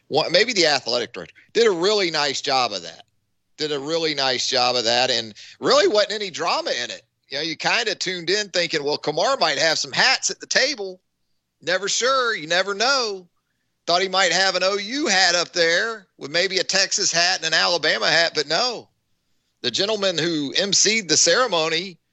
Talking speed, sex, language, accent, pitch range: 200 wpm, male, English, American, 115-185 Hz